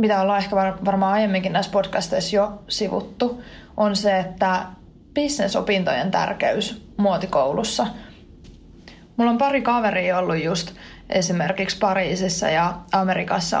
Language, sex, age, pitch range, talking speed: Finnish, female, 20-39, 185-205 Hz, 110 wpm